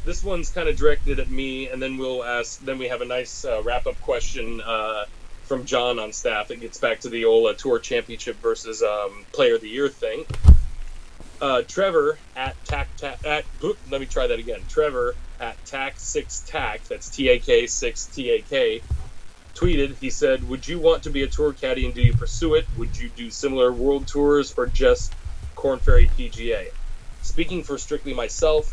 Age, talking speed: 30-49, 200 wpm